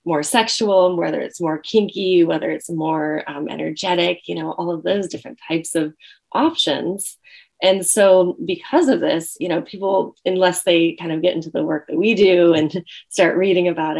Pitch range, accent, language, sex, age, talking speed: 160-195 Hz, American, English, female, 20-39, 185 wpm